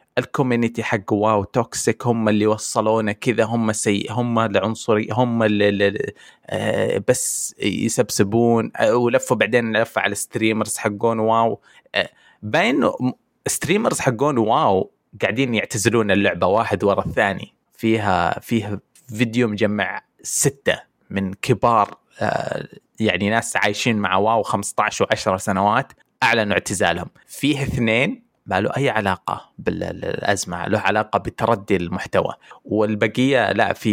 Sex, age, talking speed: male, 20-39, 120 wpm